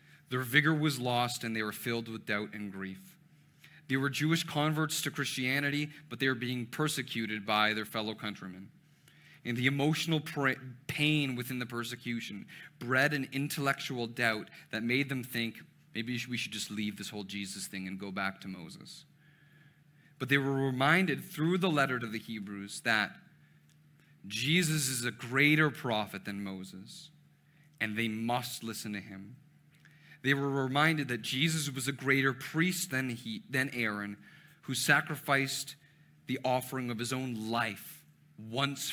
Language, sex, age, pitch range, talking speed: English, male, 30-49, 115-150 Hz, 155 wpm